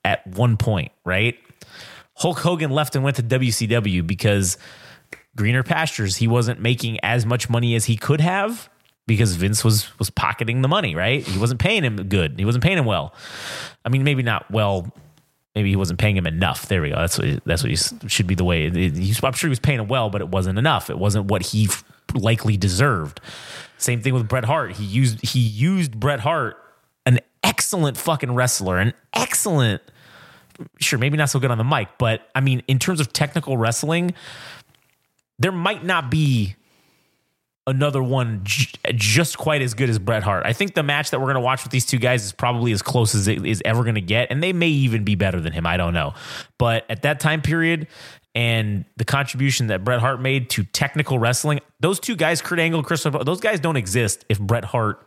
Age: 30-49